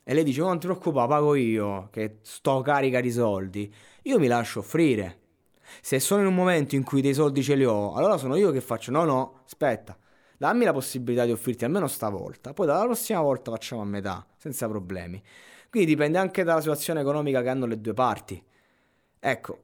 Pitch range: 110-150 Hz